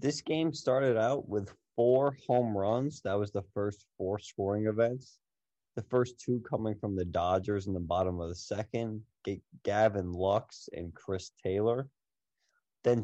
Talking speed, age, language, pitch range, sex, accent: 155 wpm, 20-39, English, 90-110 Hz, male, American